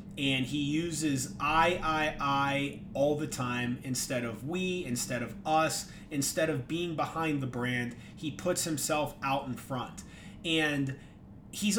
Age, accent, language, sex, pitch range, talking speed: 30-49, American, English, male, 135-160 Hz, 150 wpm